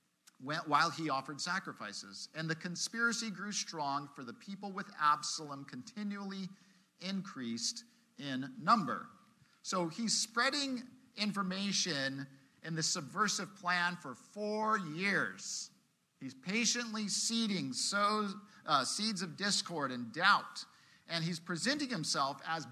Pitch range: 150-210 Hz